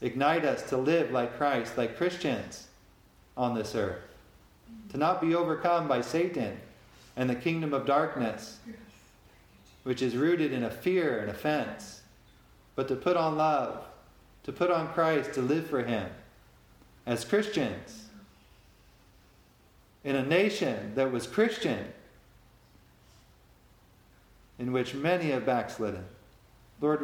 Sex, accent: male, American